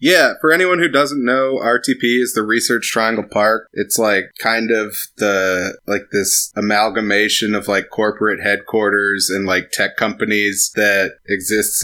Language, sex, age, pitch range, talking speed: English, male, 20-39, 95-110 Hz, 150 wpm